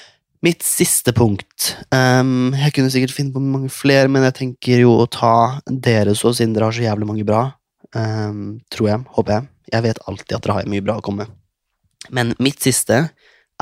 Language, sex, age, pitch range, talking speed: English, male, 20-39, 105-125 Hz, 195 wpm